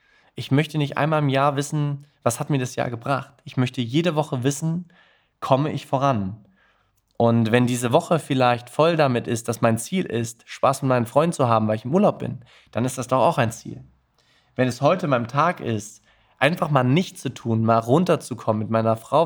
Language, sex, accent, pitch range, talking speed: German, male, German, 120-150 Hz, 210 wpm